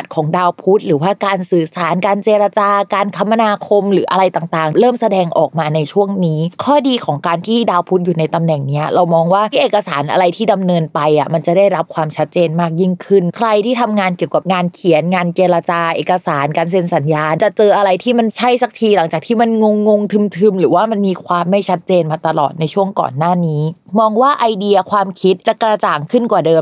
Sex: female